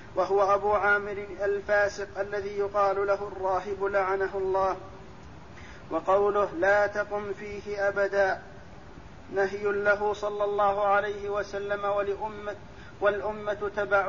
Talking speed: 100 wpm